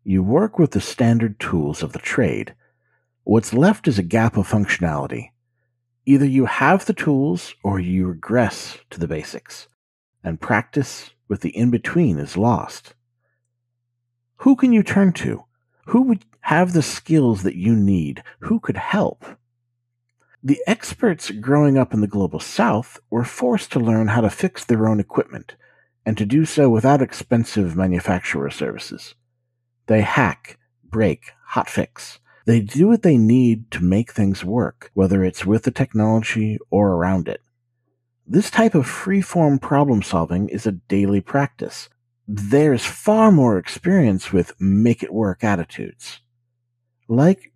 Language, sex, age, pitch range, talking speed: English, male, 50-69, 105-140 Hz, 145 wpm